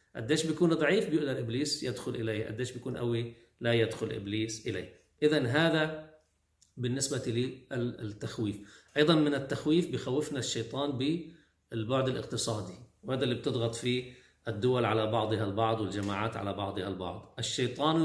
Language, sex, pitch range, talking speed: Arabic, male, 110-145 Hz, 125 wpm